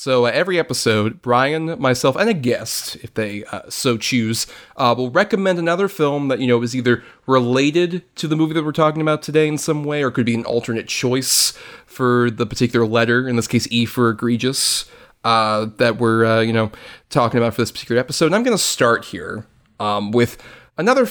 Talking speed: 210 wpm